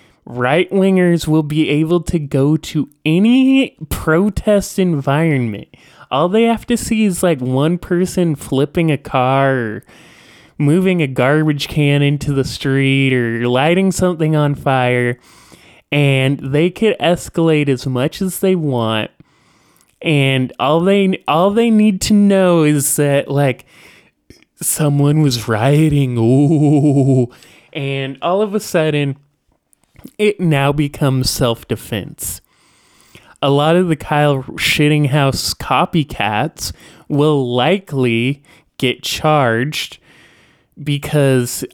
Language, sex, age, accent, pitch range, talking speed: English, male, 20-39, American, 135-185 Hz, 115 wpm